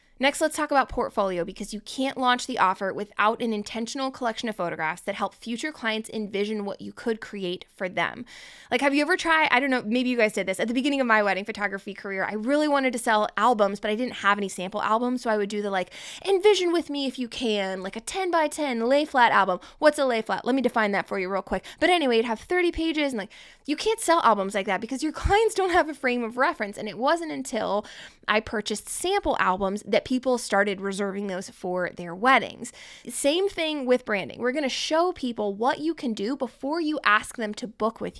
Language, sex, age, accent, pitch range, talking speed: English, female, 20-39, American, 205-280 Hz, 240 wpm